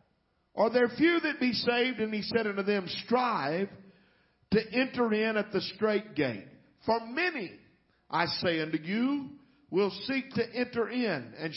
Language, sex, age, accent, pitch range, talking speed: English, male, 50-69, American, 180-235 Hz, 160 wpm